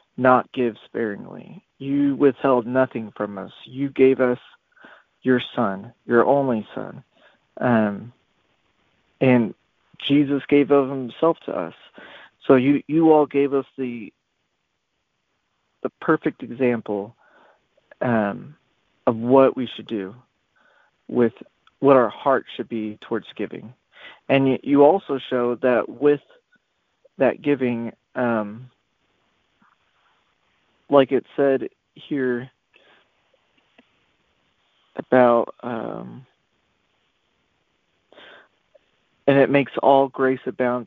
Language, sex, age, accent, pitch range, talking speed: English, male, 40-59, American, 120-140 Hz, 100 wpm